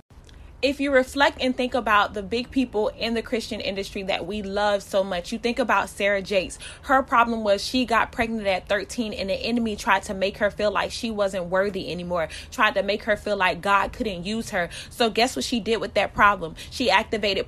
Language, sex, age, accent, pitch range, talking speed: English, female, 20-39, American, 200-230 Hz, 220 wpm